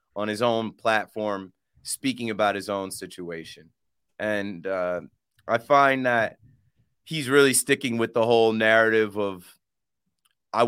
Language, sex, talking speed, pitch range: English, male, 130 wpm, 110-140 Hz